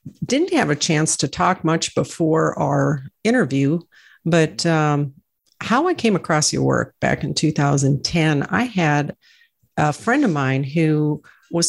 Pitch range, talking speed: 155-190 Hz, 150 wpm